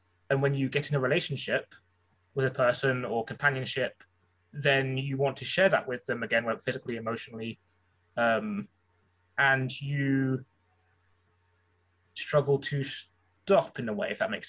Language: English